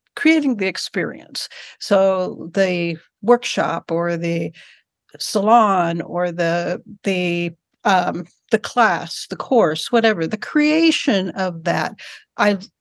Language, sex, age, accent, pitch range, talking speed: English, female, 60-79, American, 180-240 Hz, 110 wpm